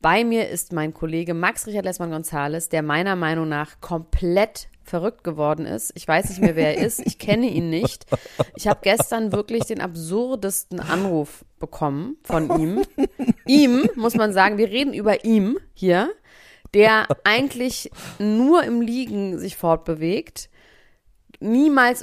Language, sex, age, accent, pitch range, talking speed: German, female, 30-49, German, 170-265 Hz, 150 wpm